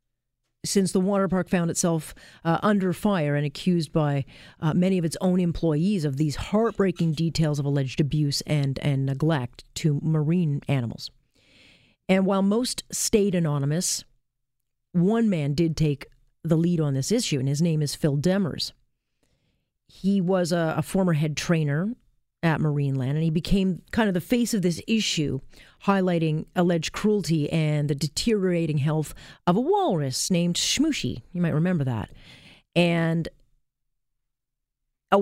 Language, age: English, 40-59